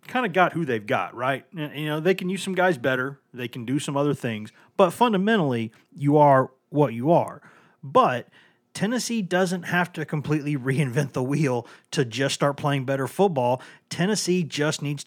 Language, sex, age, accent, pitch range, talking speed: English, male, 30-49, American, 130-160 Hz, 185 wpm